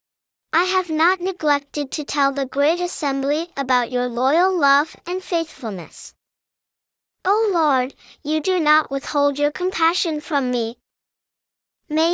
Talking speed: 130 wpm